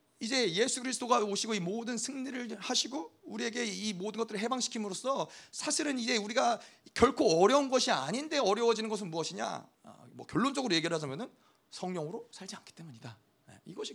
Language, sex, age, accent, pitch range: Korean, male, 30-49, native, 185-260 Hz